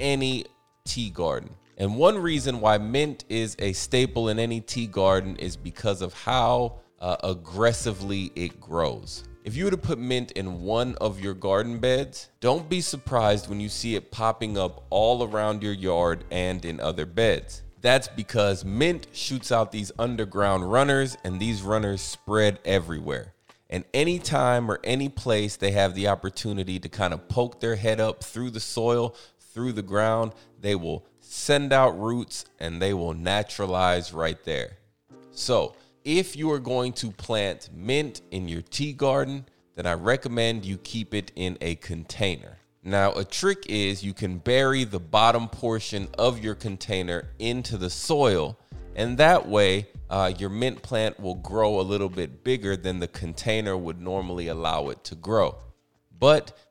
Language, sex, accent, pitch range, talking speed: English, male, American, 95-120 Hz, 165 wpm